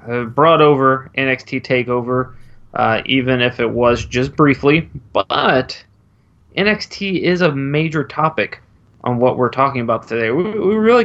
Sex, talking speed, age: male, 140 wpm, 20-39